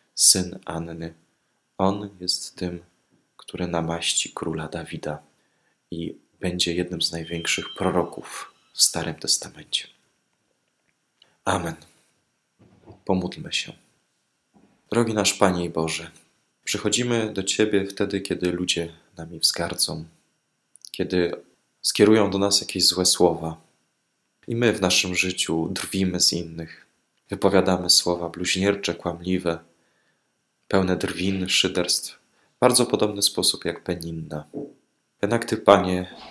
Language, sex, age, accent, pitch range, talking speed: Polish, male, 20-39, native, 85-100 Hz, 105 wpm